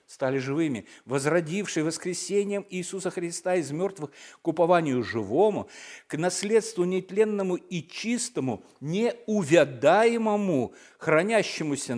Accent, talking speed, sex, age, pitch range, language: native, 90 wpm, male, 50-69, 130-185 Hz, Russian